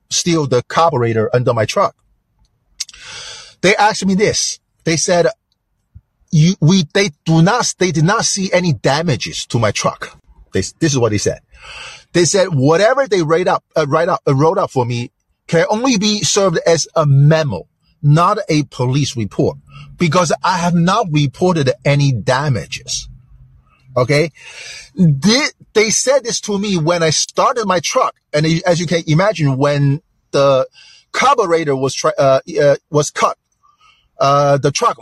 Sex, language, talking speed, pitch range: male, English, 155 wpm, 140-185 Hz